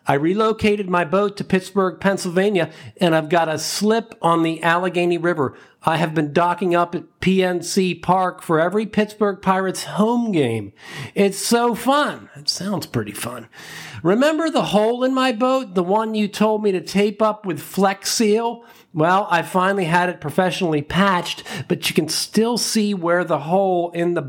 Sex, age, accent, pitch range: male, 50-69, American, 165-215 Hz